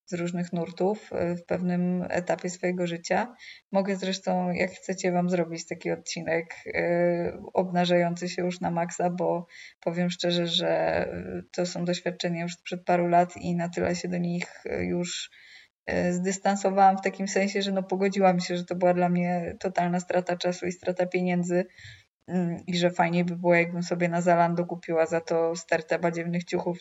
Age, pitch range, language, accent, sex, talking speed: 20-39, 175-195 Hz, Polish, native, female, 160 wpm